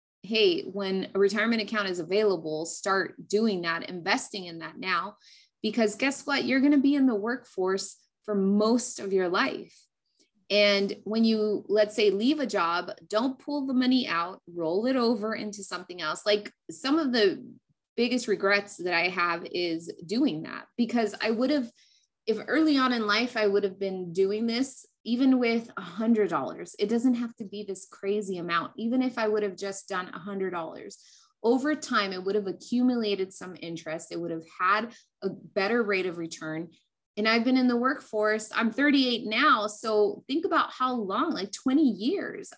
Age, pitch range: 20-39, 195-255 Hz